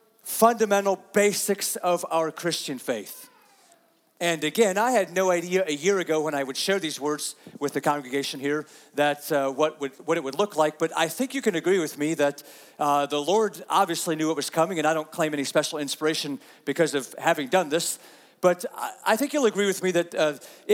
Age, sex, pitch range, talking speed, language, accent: 40-59, male, 150-195 Hz, 205 wpm, English, American